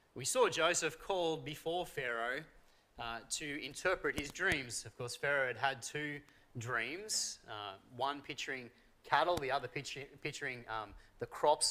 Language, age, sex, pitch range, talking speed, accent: English, 30-49, male, 130-160 Hz, 150 wpm, Australian